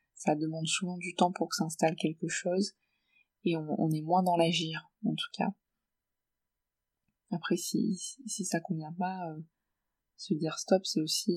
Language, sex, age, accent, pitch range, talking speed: French, female, 20-39, French, 155-185 Hz, 170 wpm